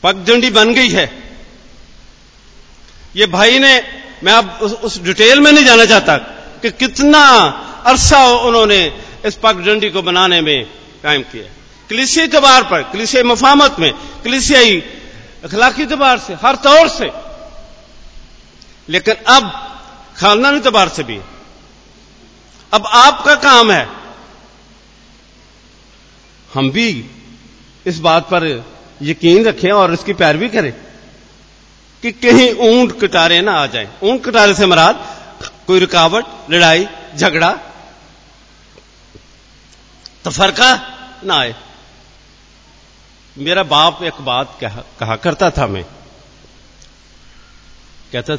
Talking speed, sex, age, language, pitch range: 110 wpm, male, 50-69, Hindi, 160-250 Hz